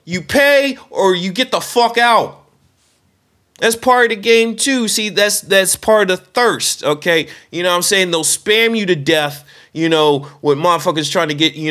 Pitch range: 150-205 Hz